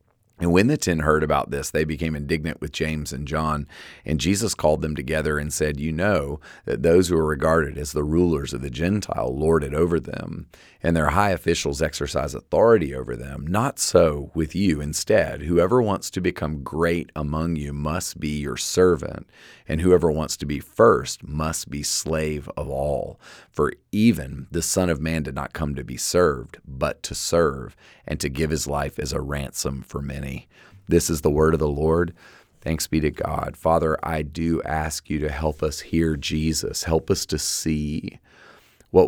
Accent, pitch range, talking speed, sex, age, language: American, 75-85 Hz, 190 wpm, male, 40-59, English